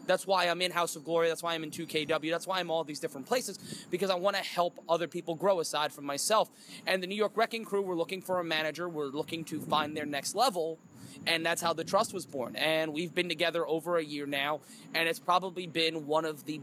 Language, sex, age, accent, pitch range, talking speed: English, male, 20-39, American, 160-190 Hz, 255 wpm